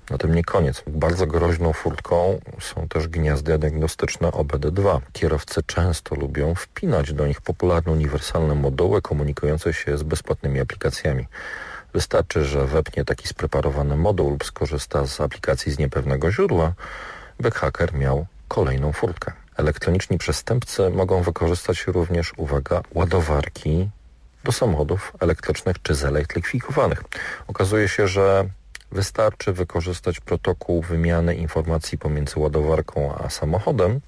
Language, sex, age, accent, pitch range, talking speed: Polish, male, 40-59, native, 75-95 Hz, 120 wpm